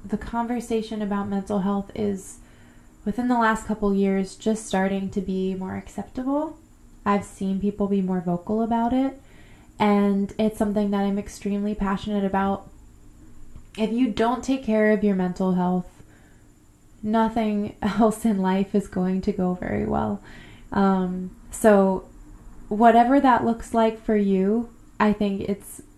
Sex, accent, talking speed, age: female, American, 145 wpm, 20-39